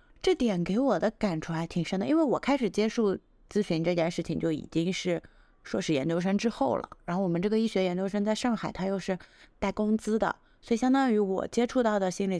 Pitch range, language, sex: 160-215 Hz, Chinese, female